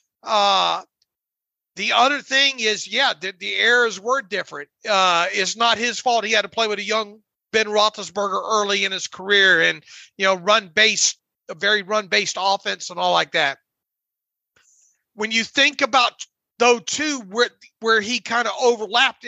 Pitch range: 210-245 Hz